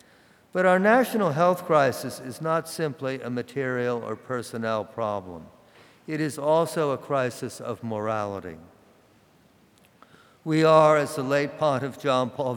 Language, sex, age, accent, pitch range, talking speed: English, male, 50-69, American, 120-155 Hz, 135 wpm